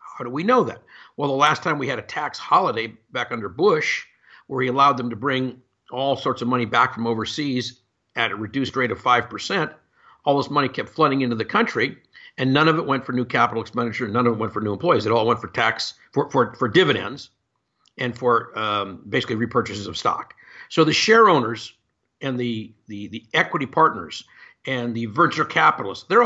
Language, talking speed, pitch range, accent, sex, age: English, 205 wpm, 120-155 Hz, American, male, 50-69